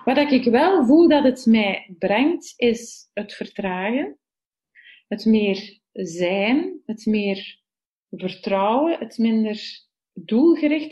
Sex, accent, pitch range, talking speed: female, Dutch, 195-245 Hz, 110 wpm